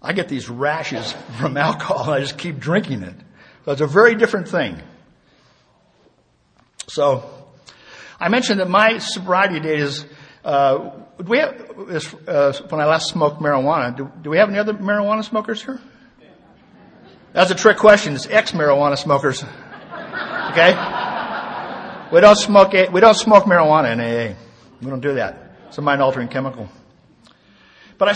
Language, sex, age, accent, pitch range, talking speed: English, male, 60-79, American, 135-205 Hz, 155 wpm